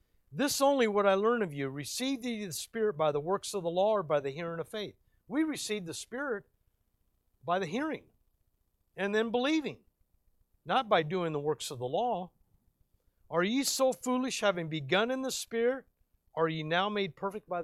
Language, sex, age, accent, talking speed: English, male, 50-69, American, 190 wpm